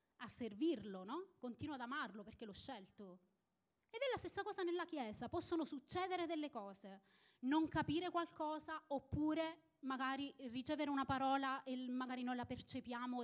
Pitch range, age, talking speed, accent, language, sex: 215-300 Hz, 30-49, 150 wpm, native, Italian, female